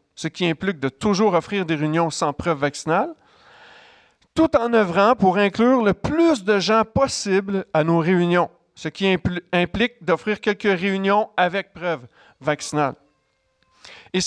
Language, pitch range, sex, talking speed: French, 160-205 Hz, male, 145 wpm